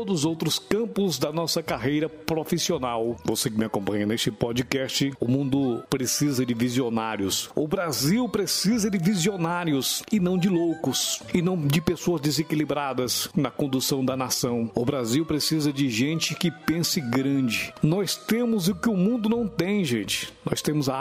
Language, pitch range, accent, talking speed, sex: Portuguese, 125-170 Hz, Brazilian, 160 wpm, male